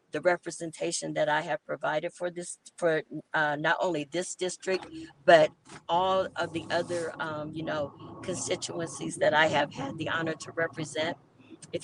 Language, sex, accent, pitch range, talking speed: English, female, American, 150-175 Hz, 160 wpm